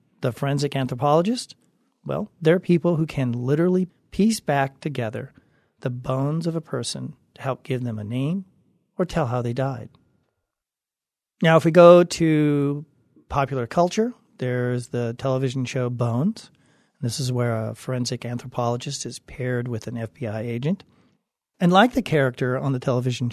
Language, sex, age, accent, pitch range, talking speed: English, male, 40-59, American, 125-160 Hz, 150 wpm